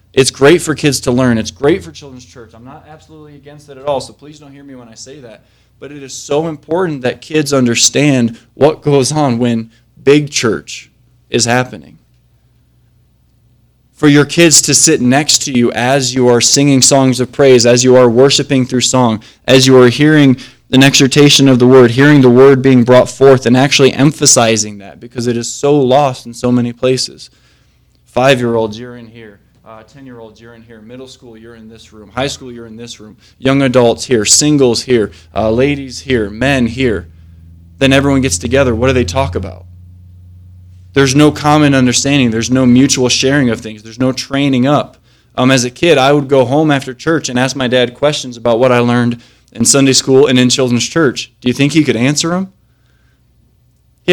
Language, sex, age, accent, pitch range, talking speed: English, male, 20-39, American, 120-140 Hz, 200 wpm